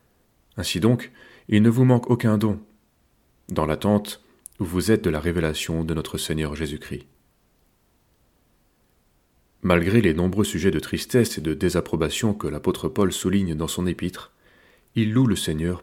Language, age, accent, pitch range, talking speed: French, 30-49, French, 80-105 Hz, 150 wpm